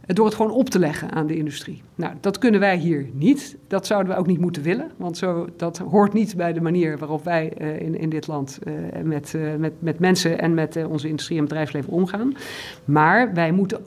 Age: 50-69